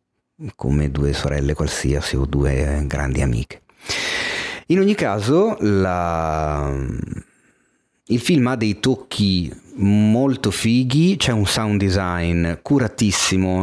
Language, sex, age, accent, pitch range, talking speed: Italian, male, 30-49, native, 80-105 Hz, 100 wpm